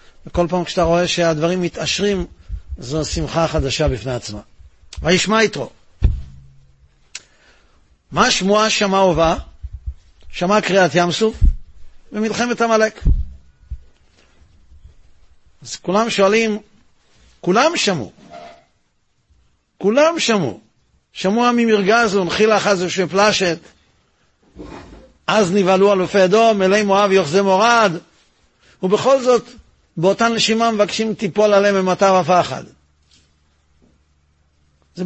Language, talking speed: Hebrew, 95 wpm